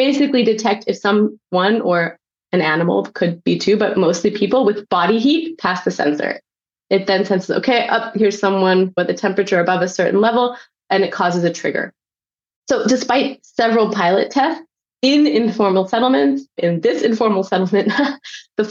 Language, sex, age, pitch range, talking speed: English, female, 20-39, 185-225 Hz, 165 wpm